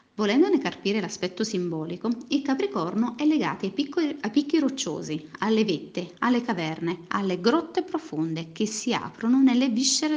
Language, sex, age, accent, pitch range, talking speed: Italian, female, 40-59, native, 190-280 Hz, 150 wpm